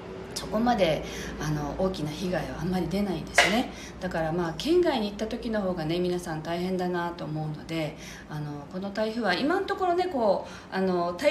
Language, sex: Japanese, female